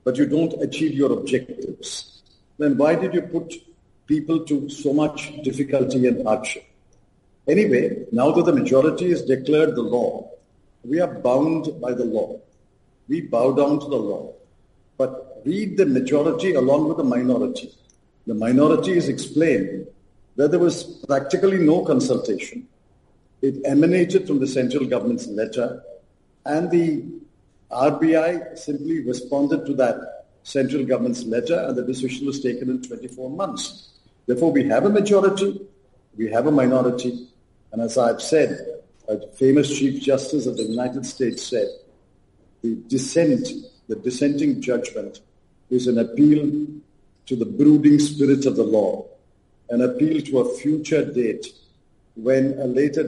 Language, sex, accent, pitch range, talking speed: English, male, Indian, 125-160 Hz, 145 wpm